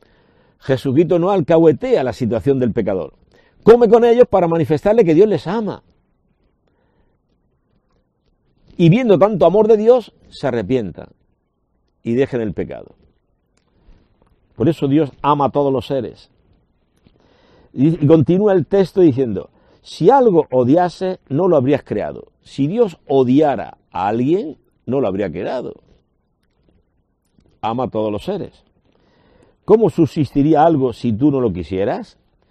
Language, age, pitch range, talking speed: Spanish, 60-79, 125-175 Hz, 130 wpm